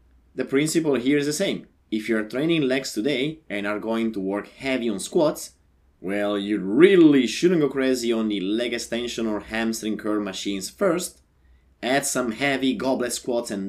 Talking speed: 175 wpm